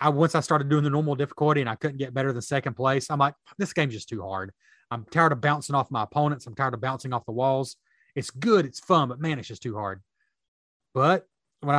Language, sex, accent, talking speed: English, male, American, 250 wpm